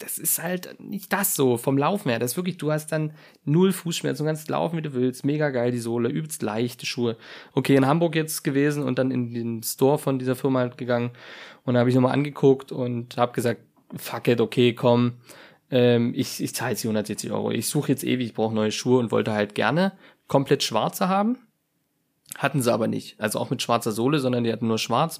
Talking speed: 225 wpm